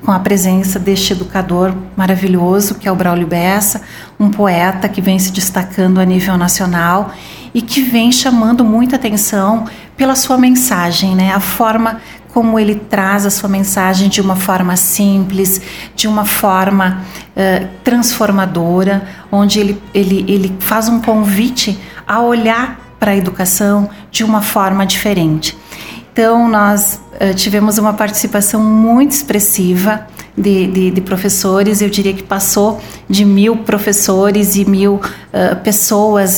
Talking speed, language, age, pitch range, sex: 140 wpm, Portuguese, 40-59, 190-215 Hz, female